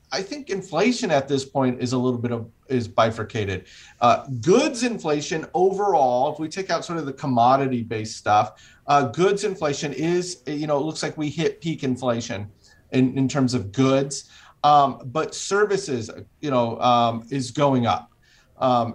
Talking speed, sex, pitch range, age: 175 wpm, male, 115-145 Hz, 30-49